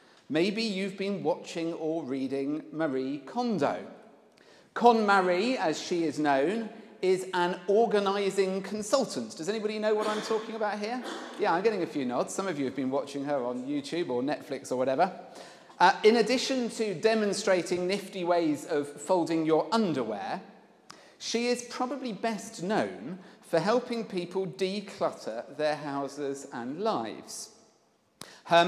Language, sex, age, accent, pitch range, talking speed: English, male, 40-59, British, 165-220 Hz, 145 wpm